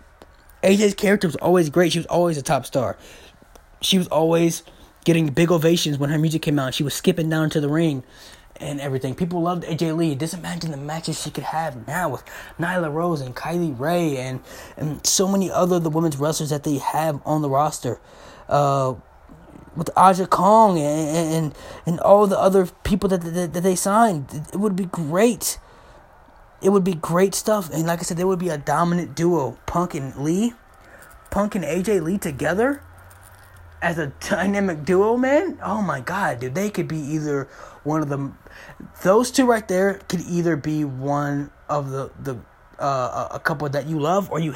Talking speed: 190 wpm